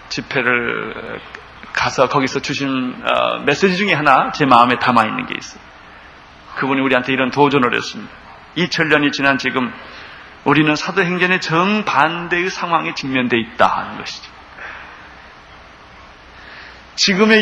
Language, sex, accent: Korean, male, native